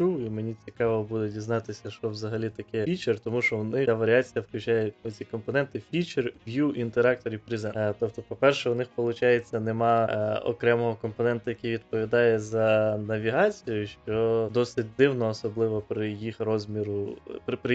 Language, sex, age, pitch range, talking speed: Ukrainian, male, 20-39, 110-120 Hz, 140 wpm